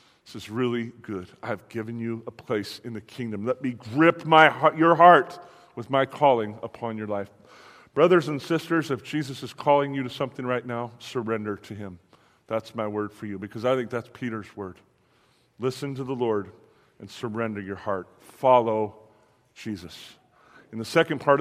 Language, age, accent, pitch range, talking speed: English, 40-59, American, 115-145 Hz, 180 wpm